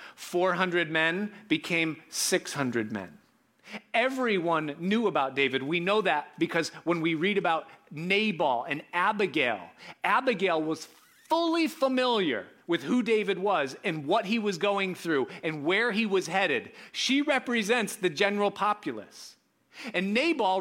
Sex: male